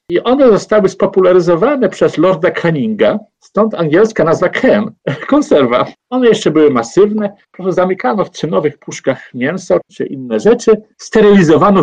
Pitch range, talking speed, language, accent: 160-230 Hz, 125 wpm, Polish, native